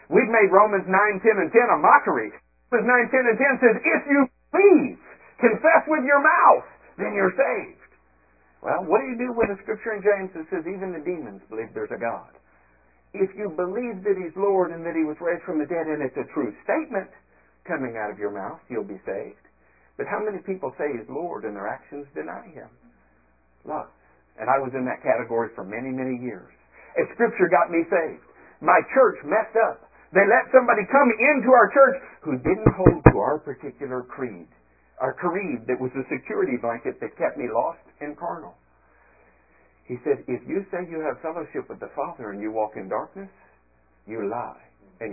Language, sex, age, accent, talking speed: English, male, 50-69, American, 200 wpm